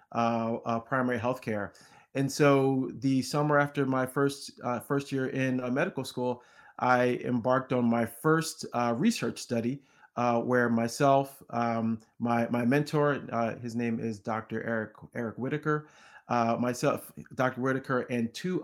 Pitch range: 125-145 Hz